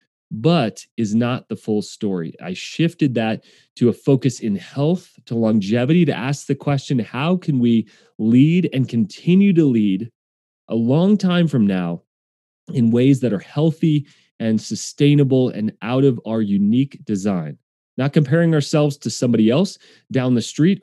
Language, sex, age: English, male, 30-49